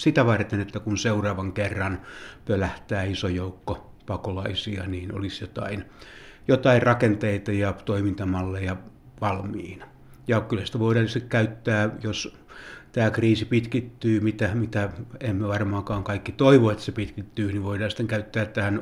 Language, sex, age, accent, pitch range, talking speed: Finnish, male, 60-79, native, 100-115 Hz, 130 wpm